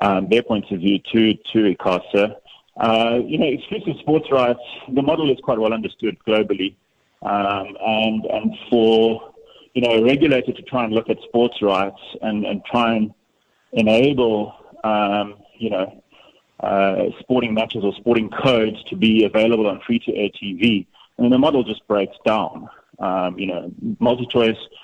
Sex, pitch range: male, 100-120 Hz